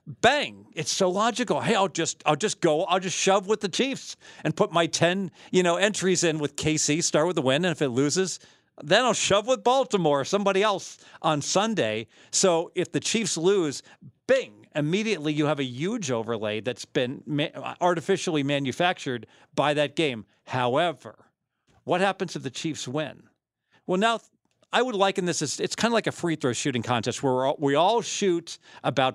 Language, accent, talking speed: English, American, 185 wpm